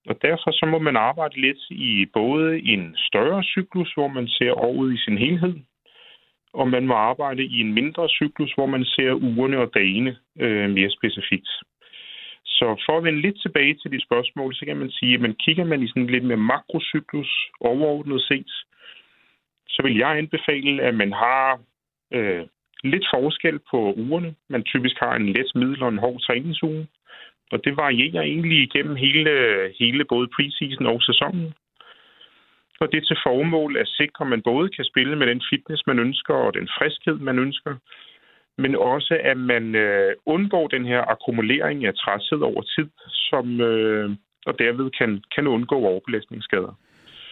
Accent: native